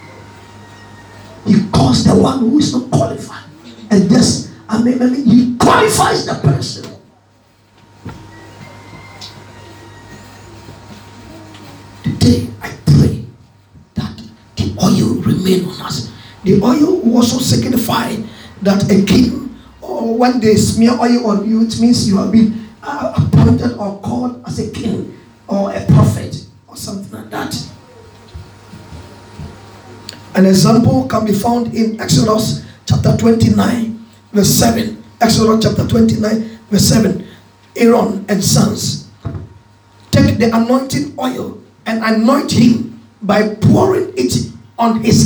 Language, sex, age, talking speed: English, male, 50-69, 120 wpm